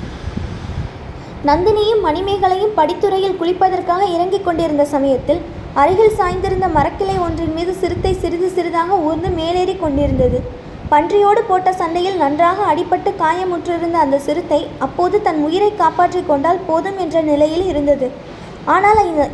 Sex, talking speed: female, 110 wpm